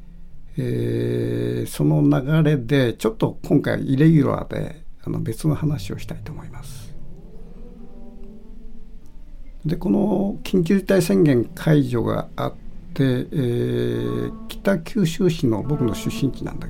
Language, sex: Japanese, male